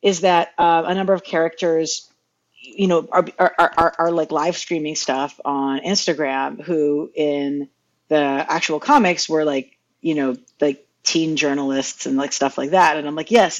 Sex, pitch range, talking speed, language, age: female, 140-165 Hz, 175 wpm, English, 40-59